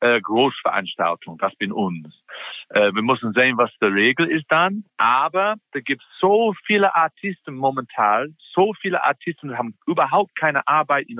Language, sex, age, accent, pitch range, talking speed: German, male, 50-69, German, 115-145 Hz, 155 wpm